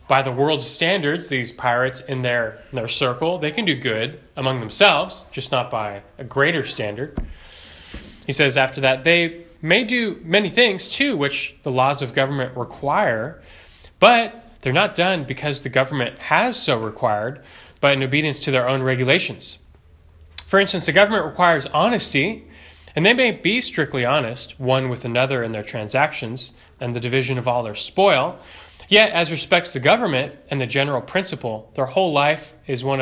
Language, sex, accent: English, male, American